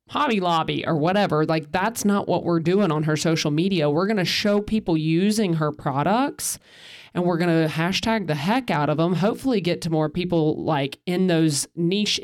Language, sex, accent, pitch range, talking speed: English, male, American, 160-200 Hz, 200 wpm